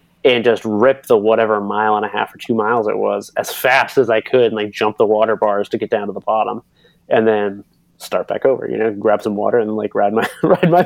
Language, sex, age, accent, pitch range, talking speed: English, male, 20-39, American, 110-155 Hz, 260 wpm